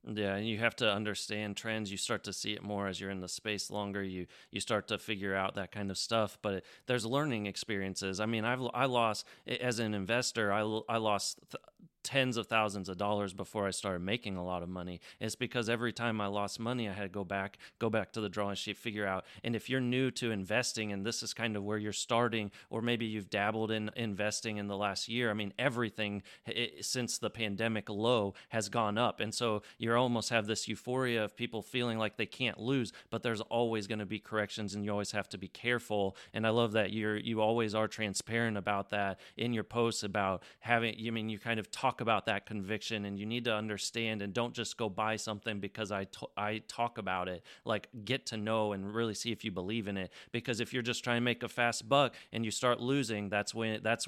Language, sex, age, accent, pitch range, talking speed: English, male, 30-49, American, 100-120 Hz, 235 wpm